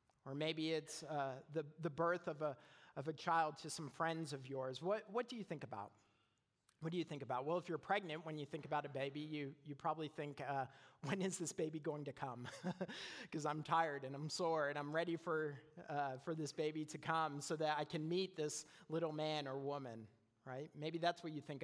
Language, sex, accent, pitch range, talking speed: English, male, American, 145-180 Hz, 225 wpm